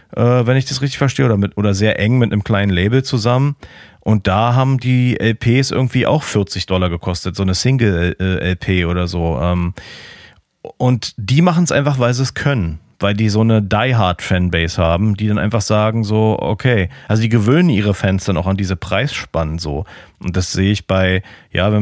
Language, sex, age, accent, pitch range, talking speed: German, male, 40-59, German, 95-115 Hz, 195 wpm